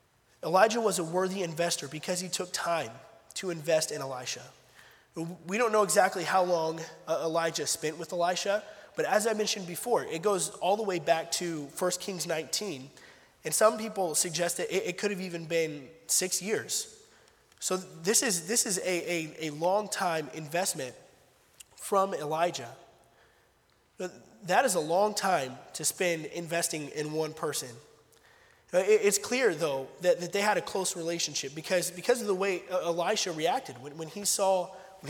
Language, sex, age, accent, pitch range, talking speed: English, male, 20-39, American, 165-205 Hz, 160 wpm